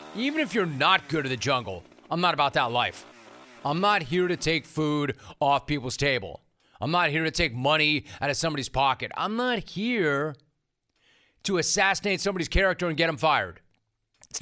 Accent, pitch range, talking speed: American, 125-175 Hz, 185 wpm